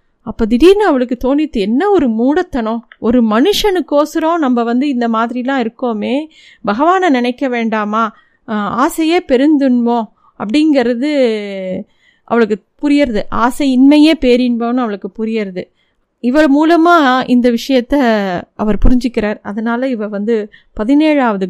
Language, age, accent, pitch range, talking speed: Tamil, 30-49, native, 230-290 Hz, 105 wpm